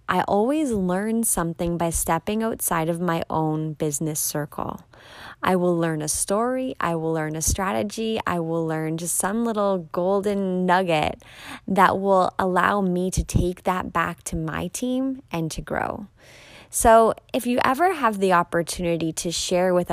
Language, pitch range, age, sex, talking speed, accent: English, 165-200 Hz, 20-39, female, 165 wpm, American